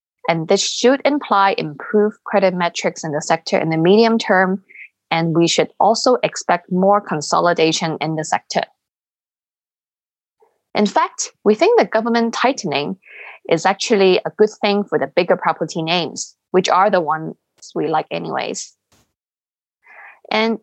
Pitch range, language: 175-220 Hz, English